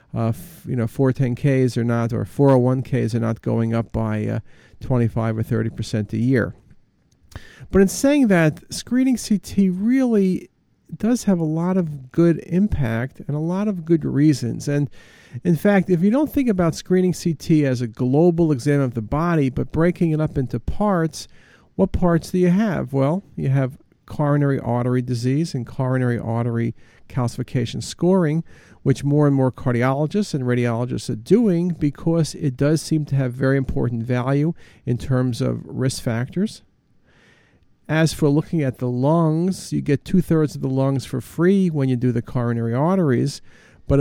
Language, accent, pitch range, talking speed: English, American, 125-170 Hz, 165 wpm